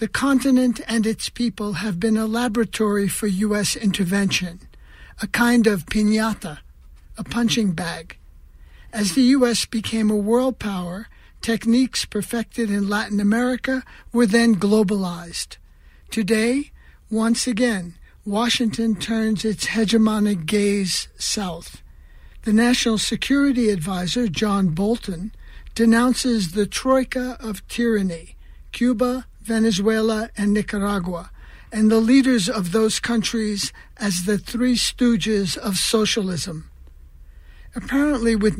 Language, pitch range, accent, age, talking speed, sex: English, 195-230 Hz, American, 60-79, 110 wpm, male